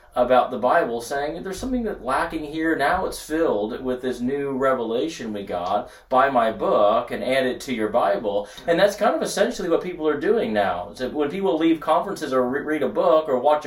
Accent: American